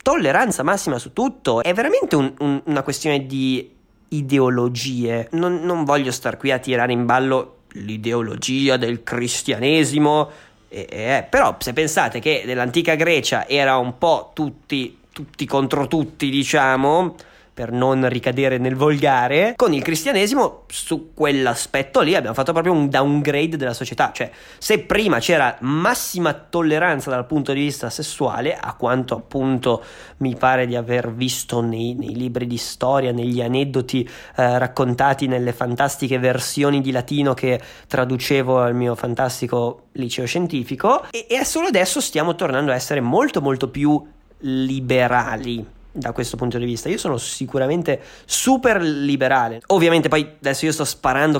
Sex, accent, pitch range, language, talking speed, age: male, native, 125-145 Hz, Italian, 145 wpm, 20-39